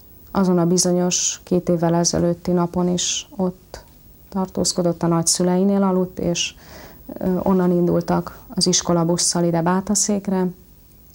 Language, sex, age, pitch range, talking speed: Hungarian, female, 30-49, 170-185 Hz, 110 wpm